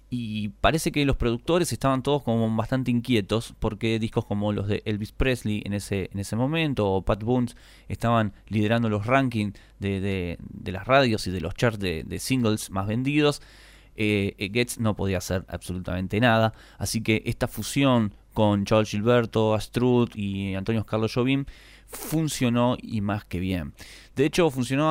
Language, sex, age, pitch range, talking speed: Spanish, male, 20-39, 105-130 Hz, 170 wpm